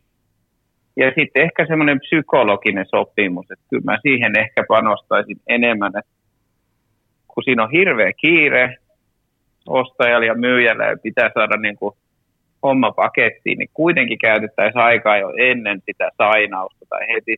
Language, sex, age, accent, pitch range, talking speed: Finnish, male, 30-49, native, 105-125 Hz, 135 wpm